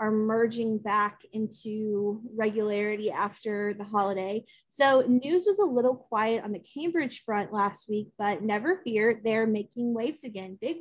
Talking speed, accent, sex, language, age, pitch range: 155 wpm, American, female, English, 30-49, 215-265 Hz